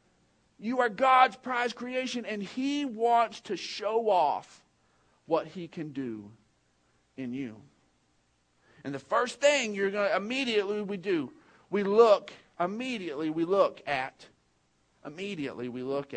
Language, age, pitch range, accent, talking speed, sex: English, 50-69, 155-245 Hz, American, 135 wpm, male